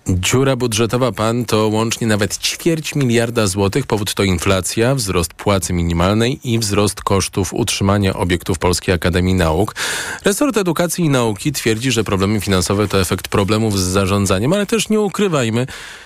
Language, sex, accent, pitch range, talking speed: Polish, male, native, 95-145 Hz, 150 wpm